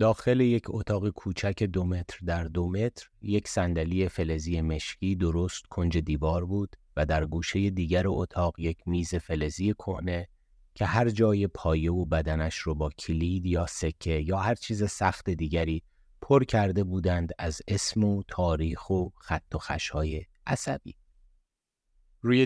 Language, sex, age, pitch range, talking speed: Persian, male, 30-49, 85-105 Hz, 145 wpm